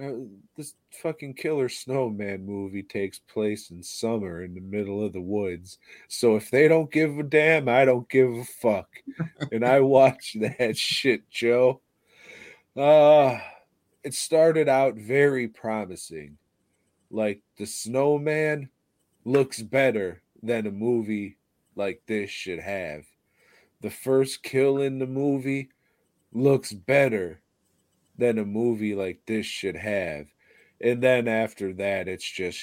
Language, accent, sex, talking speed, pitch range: English, American, male, 130 wpm, 95-130 Hz